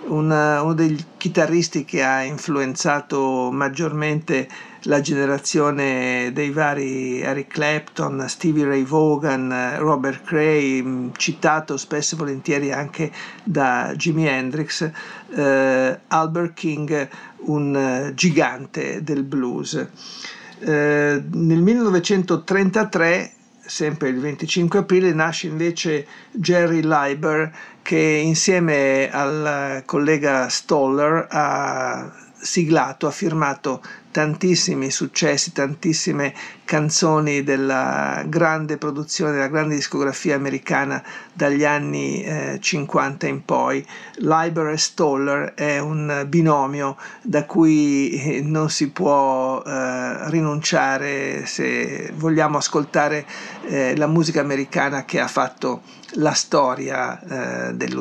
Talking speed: 100 wpm